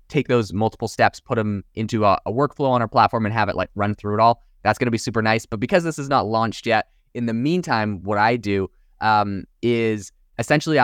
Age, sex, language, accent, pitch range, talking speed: 20-39, male, English, American, 105-135 Hz, 240 wpm